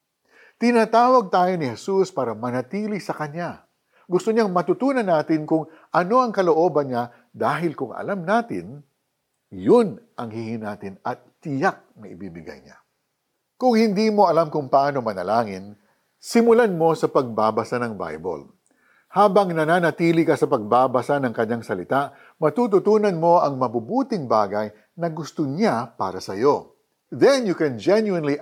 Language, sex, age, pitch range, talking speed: Filipino, male, 50-69, 120-180 Hz, 140 wpm